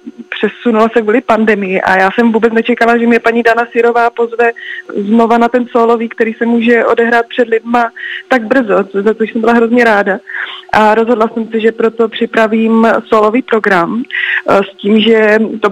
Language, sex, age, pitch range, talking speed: Czech, female, 20-39, 205-230 Hz, 175 wpm